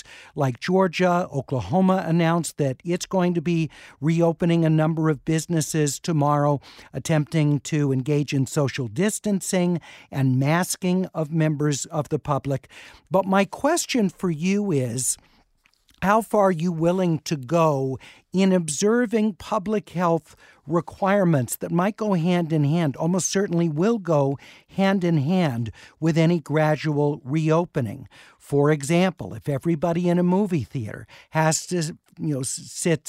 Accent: American